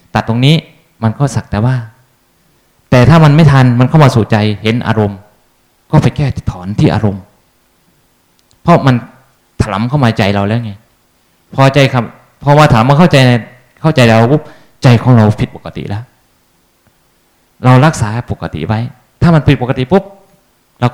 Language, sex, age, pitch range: Thai, male, 20-39, 110-135 Hz